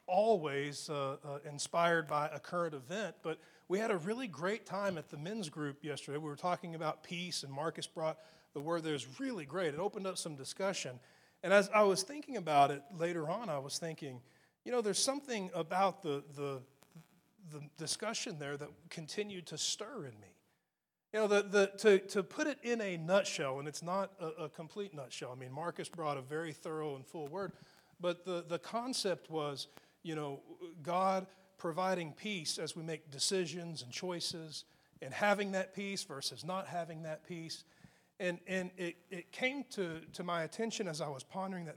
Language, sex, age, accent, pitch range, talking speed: English, male, 40-59, American, 150-195 Hz, 190 wpm